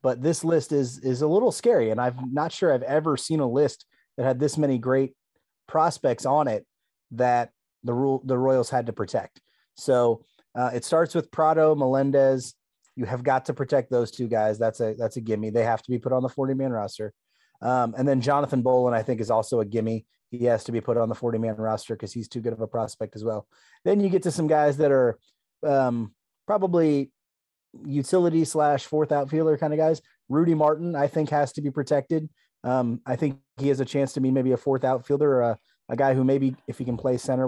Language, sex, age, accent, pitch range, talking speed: English, male, 30-49, American, 125-145 Hz, 225 wpm